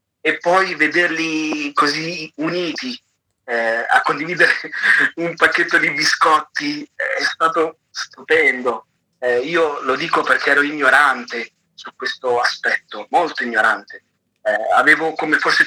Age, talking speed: 30-49, 120 wpm